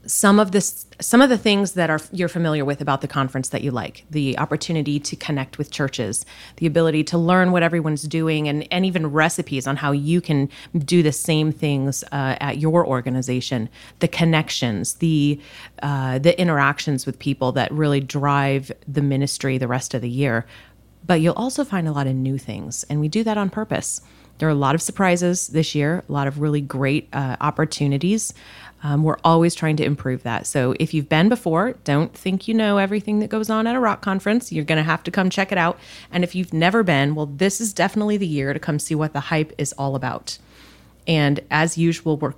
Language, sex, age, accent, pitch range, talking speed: English, female, 30-49, American, 140-175 Hz, 210 wpm